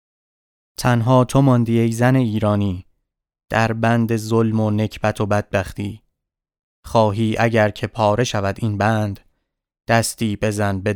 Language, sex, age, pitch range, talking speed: Persian, male, 20-39, 100-120 Hz, 125 wpm